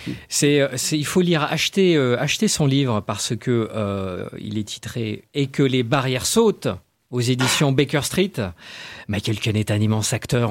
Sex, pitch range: male, 115-175 Hz